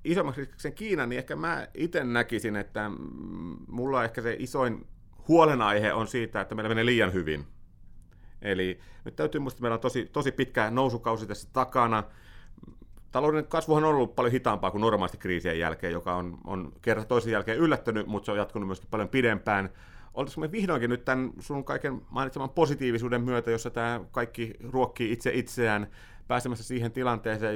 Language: Finnish